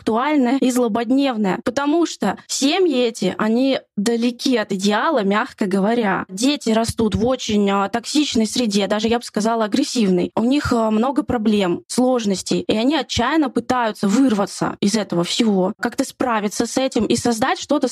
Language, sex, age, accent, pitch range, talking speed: Russian, female, 20-39, native, 220-265 Hz, 145 wpm